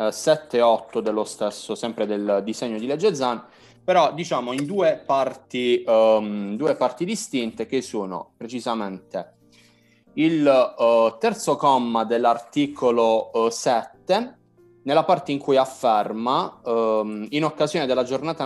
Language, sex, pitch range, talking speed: Italian, male, 115-145 Hz, 130 wpm